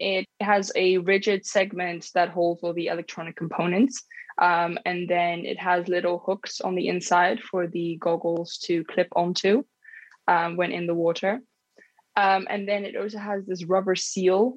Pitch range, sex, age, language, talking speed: 170-195 Hz, female, 20-39, English, 170 wpm